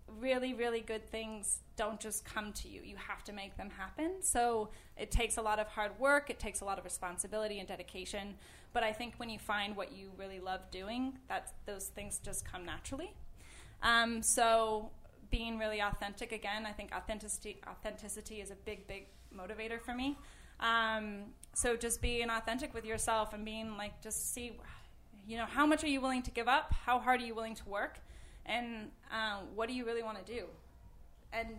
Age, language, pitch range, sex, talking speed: 10-29, English, 200-235 Hz, female, 195 wpm